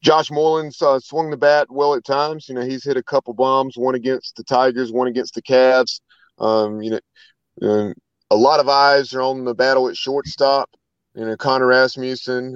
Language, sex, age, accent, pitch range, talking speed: English, male, 30-49, American, 120-135 Hz, 205 wpm